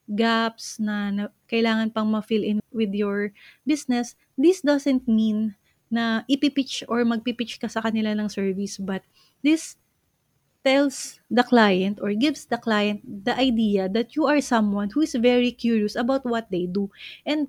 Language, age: English, 20-39